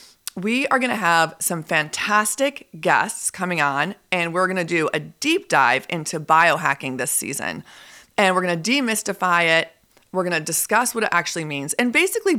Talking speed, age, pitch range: 185 wpm, 30-49, 165-215 Hz